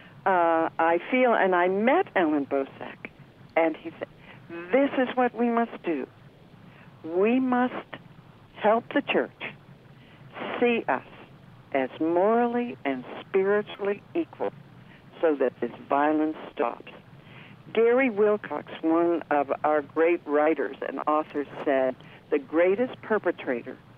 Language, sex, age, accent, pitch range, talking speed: English, female, 60-79, American, 150-210 Hz, 120 wpm